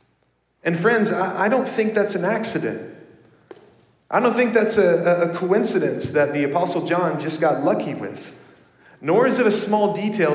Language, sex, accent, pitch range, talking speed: English, male, American, 135-190 Hz, 160 wpm